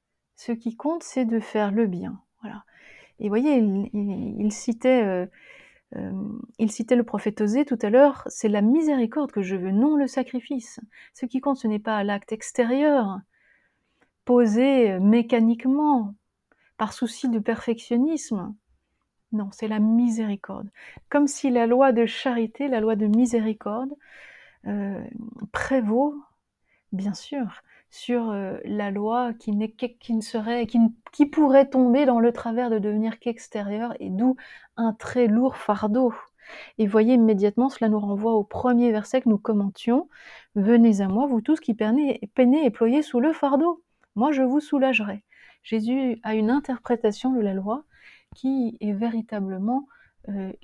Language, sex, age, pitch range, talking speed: French, female, 30-49, 215-260 Hz, 165 wpm